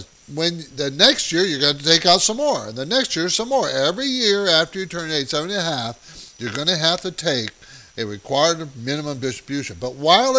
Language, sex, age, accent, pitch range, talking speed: English, male, 50-69, American, 140-215 Hz, 220 wpm